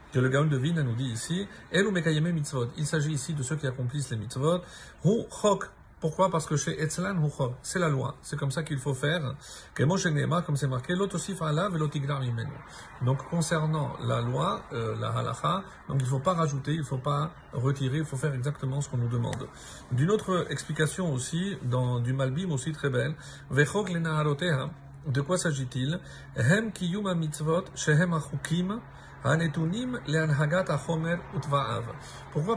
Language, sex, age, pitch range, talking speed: French, male, 50-69, 135-170 Hz, 135 wpm